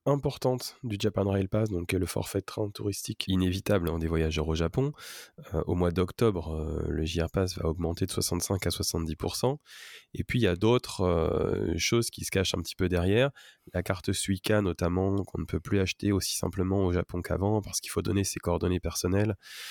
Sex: male